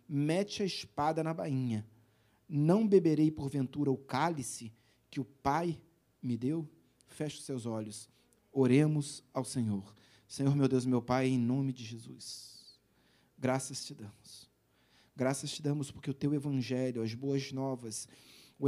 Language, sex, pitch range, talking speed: Portuguese, male, 125-170 Hz, 145 wpm